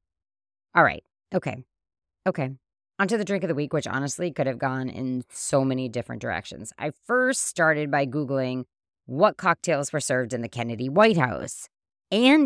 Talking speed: 175 wpm